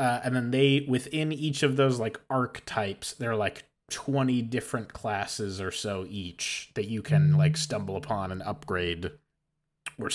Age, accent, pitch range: 20-39, American, 110-135 Hz